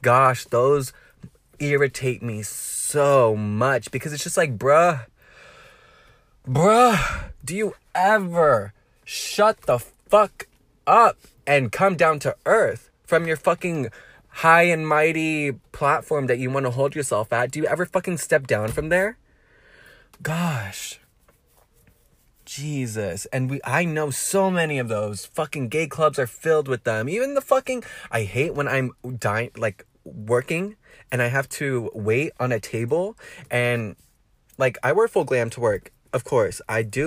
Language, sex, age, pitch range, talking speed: English, male, 20-39, 120-155 Hz, 150 wpm